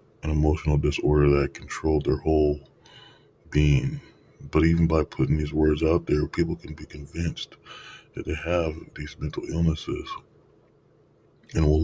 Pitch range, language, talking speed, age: 75-80 Hz, English, 140 wpm, 20-39